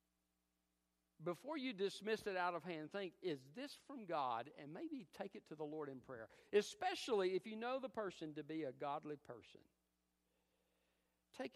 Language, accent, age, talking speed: English, American, 60-79, 170 wpm